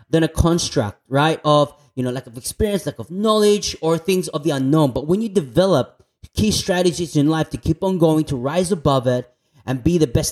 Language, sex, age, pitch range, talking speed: English, male, 30-49, 145-200 Hz, 220 wpm